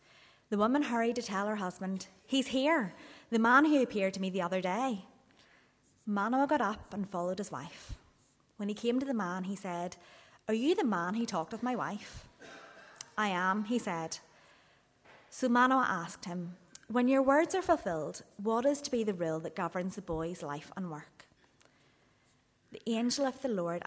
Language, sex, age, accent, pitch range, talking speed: English, female, 30-49, British, 175-230 Hz, 185 wpm